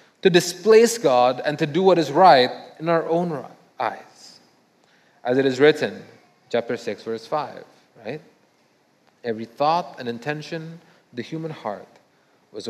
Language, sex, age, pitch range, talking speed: English, male, 30-49, 125-165 Hz, 145 wpm